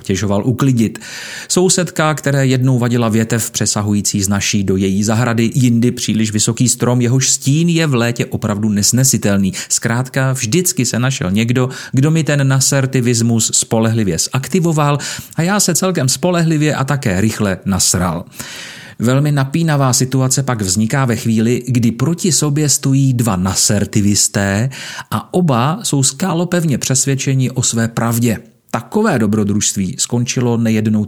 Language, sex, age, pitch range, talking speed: Czech, male, 30-49, 110-140 Hz, 135 wpm